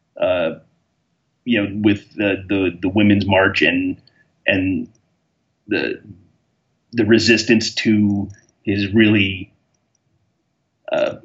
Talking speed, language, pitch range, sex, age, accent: 95 wpm, English, 105-140 Hz, male, 30-49, American